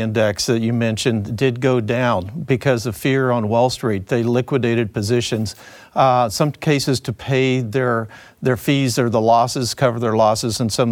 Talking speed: 175 wpm